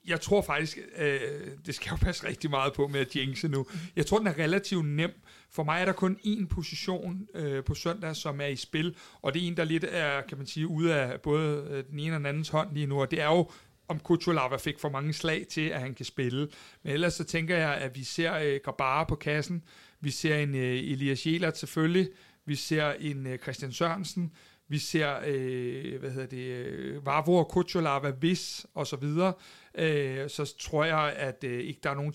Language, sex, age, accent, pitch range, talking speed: Danish, male, 60-79, native, 140-170 Hz, 215 wpm